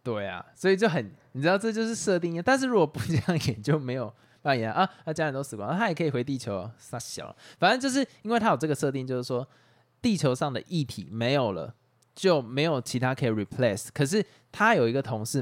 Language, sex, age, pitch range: Chinese, male, 20-39, 115-150 Hz